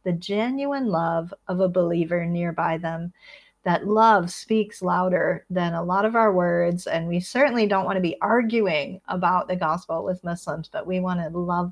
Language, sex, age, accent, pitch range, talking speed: English, female, 40-59, American, 170-220 Hz, 185 wpm